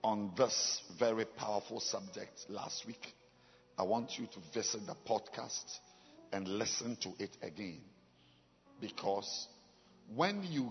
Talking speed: 125 wpm